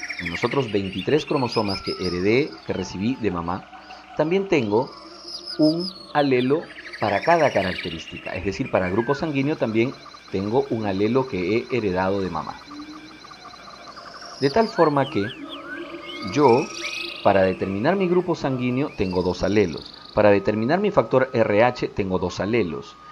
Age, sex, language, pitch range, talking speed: 40-59, male, Spanish, 105-170 Hz, 135 wpm